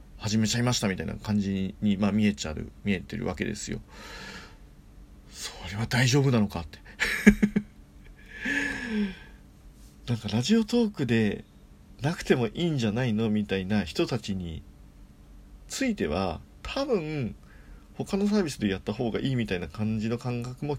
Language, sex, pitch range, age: Japanese, male, 95-140 Hz, 40-59